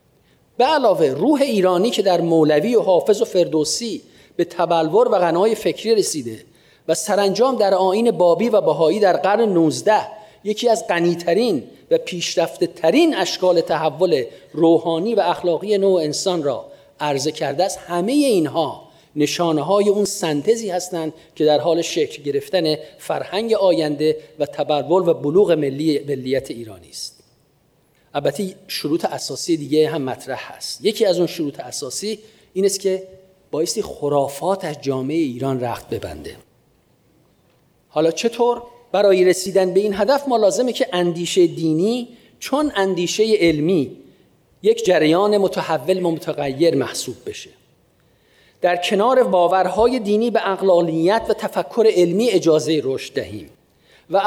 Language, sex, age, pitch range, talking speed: Persian, male, 40-59, 160-210 Hz, 130 wpm